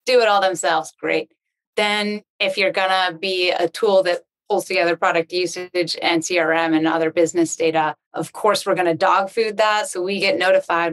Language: English